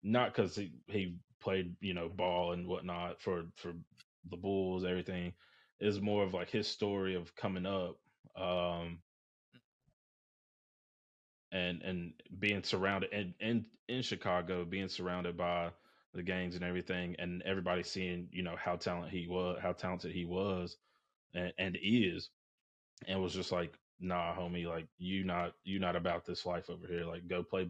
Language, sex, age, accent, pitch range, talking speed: English, male, 20-39, American, 85-95 Hz, 165 wpm